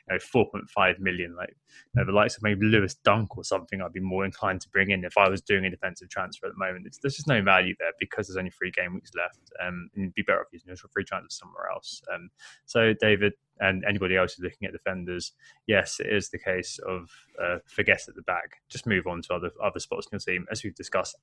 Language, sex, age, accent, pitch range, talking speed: English, male, 20-39, British, 100-145 Hz, 255 wpm